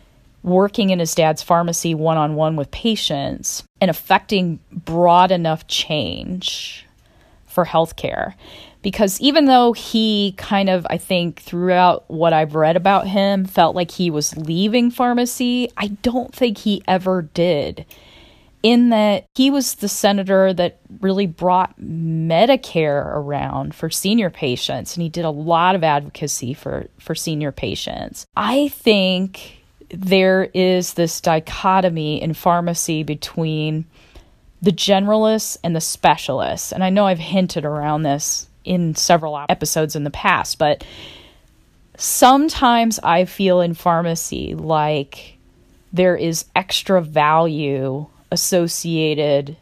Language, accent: English, American